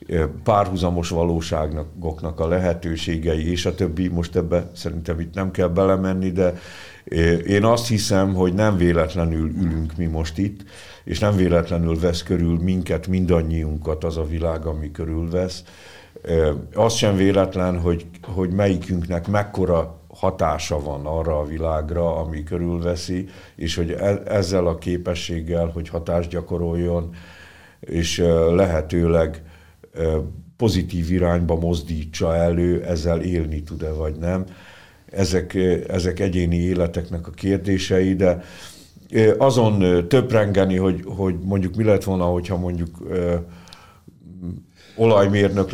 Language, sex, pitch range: Hungarian, male, 85-95 Hz